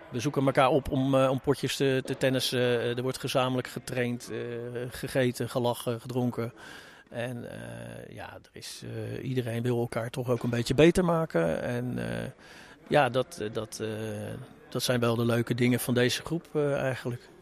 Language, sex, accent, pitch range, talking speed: Dutch, male, Dutch, 115-135 Hz, 180 wpm